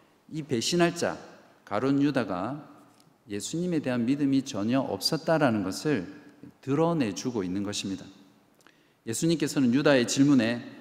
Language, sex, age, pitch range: Korean, male, 50-69, 110-160 Hz